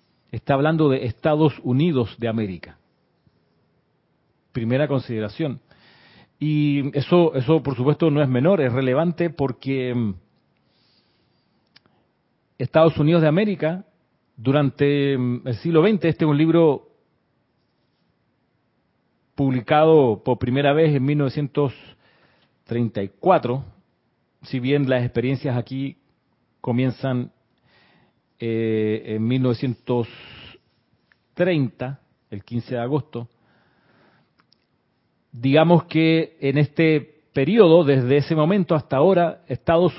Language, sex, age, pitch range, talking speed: Spanish, male, 40-59, 120-150 Hz, 95 wpm